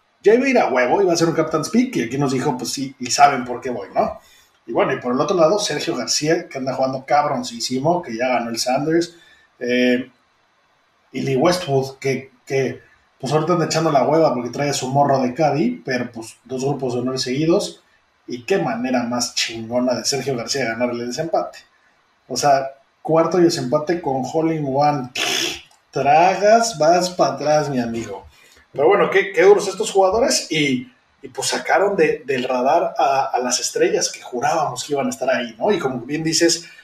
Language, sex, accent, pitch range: Spanish, male, Mexican, 130-175 Hz